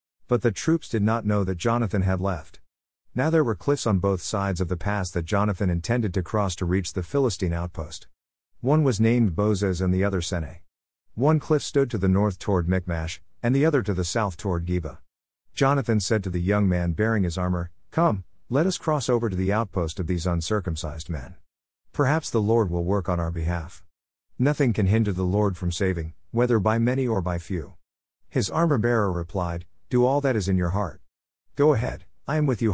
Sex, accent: male, American